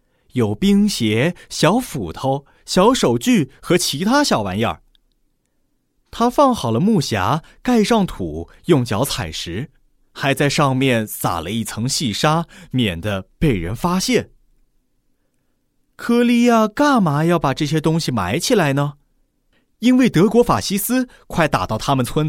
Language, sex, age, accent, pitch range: Chinese, male, 30-49, native, 115-195 Hz